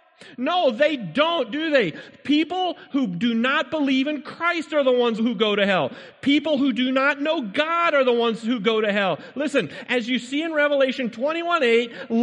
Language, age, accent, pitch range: English, 40-59, American, 255-300 Hz